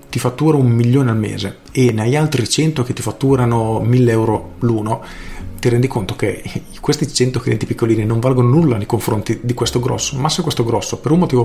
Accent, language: native, Italian